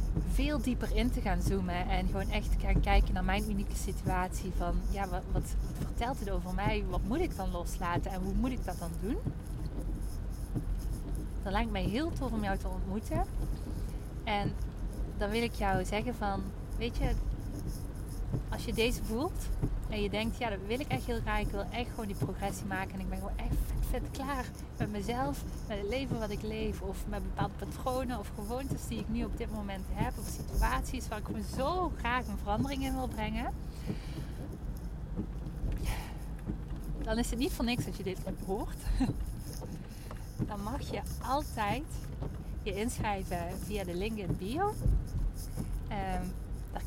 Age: 20-39